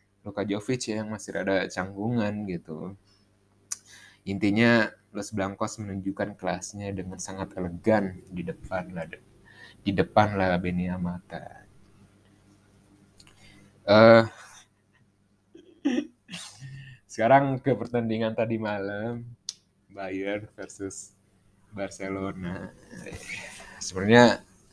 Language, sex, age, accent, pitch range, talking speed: Indonesian, male, 20-39, native, 95-115 Hz, 75 wpm